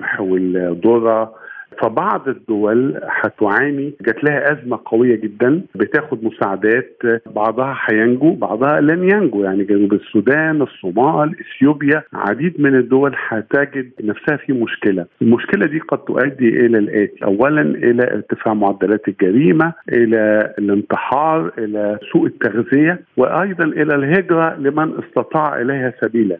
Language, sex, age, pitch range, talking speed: Arabic, male, 50-69, 105-140 Hz, 120 wpm